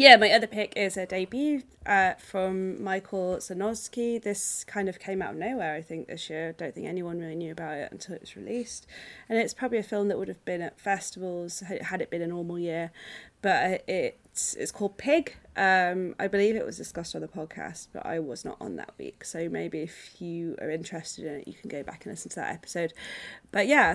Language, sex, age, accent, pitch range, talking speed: English, female, 20-39, British, 170-200 Hz, 225 wpm